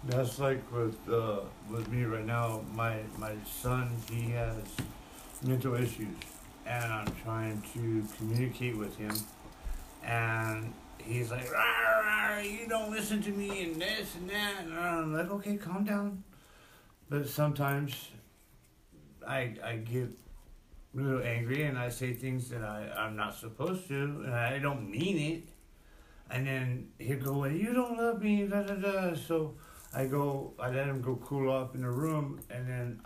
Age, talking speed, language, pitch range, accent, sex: 60-79, 160 wpm, English, 115-145 Hz, American, male